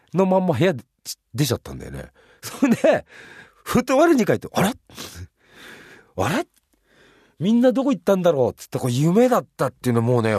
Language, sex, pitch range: Japanese, male, 90-150 Hz